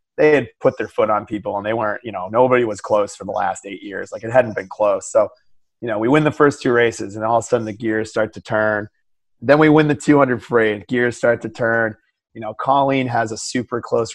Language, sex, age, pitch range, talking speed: English, male, 30-49, 110-140 Hz, 265 wpm